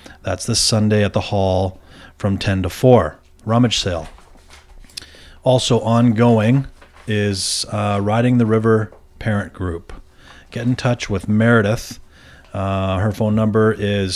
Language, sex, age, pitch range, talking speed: English, male, 40-59, 90-110 Hz, 130 wpm